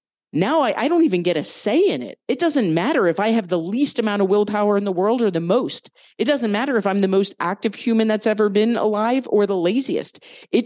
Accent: American